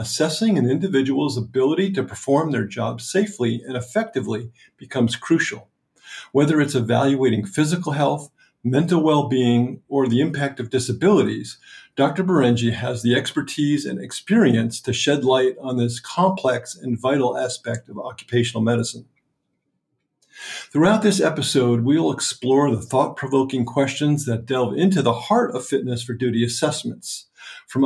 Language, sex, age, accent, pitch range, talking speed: English, male, 50-69, American, 120-150 Hz, 135 wpm